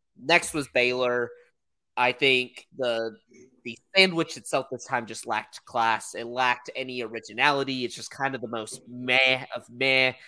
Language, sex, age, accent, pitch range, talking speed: English, male, 20-39, American, 120-140 Hz, 160 wpm